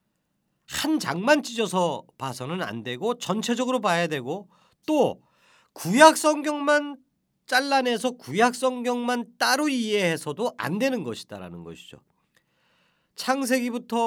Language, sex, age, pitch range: Korean, male, 40-59, 175-255 Hz